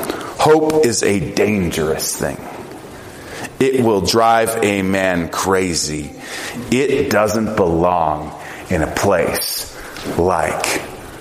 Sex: male